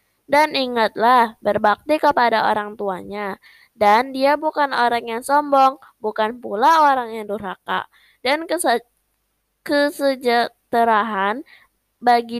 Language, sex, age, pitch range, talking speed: Indonesian, female, 20-39, 220-275 Hz, 95 wpm